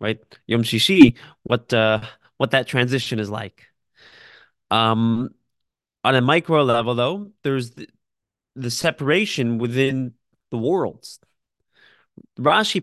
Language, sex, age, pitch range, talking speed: English, male, 20-39, 120-155 Hz, 110 wpm